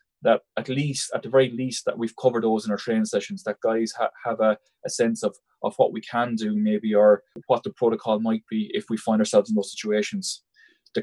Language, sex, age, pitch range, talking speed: English, male, 20-39, 110-145 Hz, 235 wpm